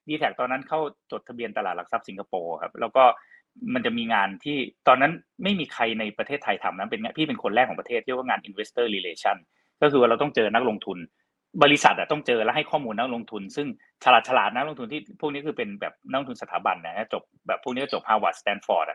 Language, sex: Thai, male